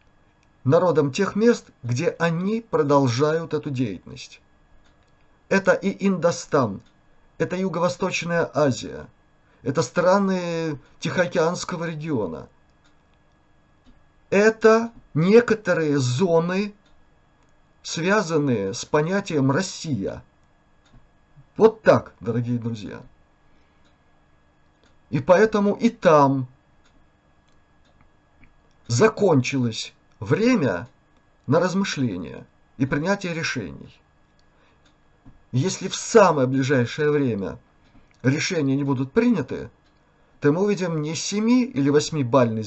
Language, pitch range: Russian, 115-175 Hz